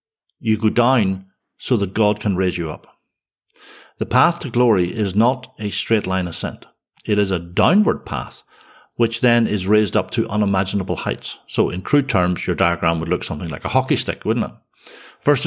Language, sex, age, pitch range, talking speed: English, male, 60-79, 95-125 Hz, 190 wpm